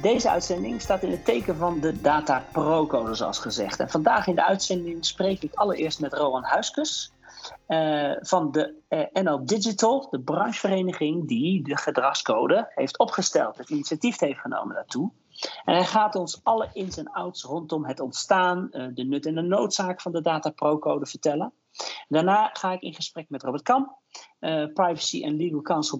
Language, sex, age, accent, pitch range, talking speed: Dutch, male, 40-59, Dutch, 155-205 Hz, 180 wpm